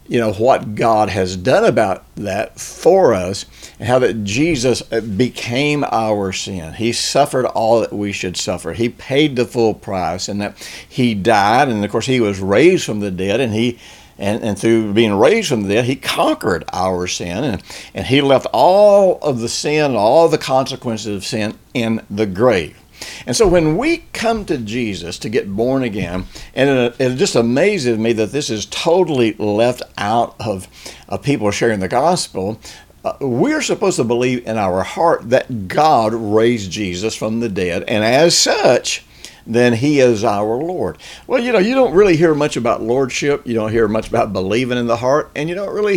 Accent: American